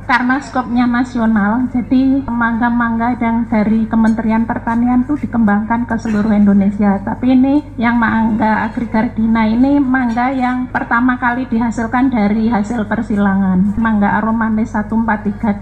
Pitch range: 225-255 Hz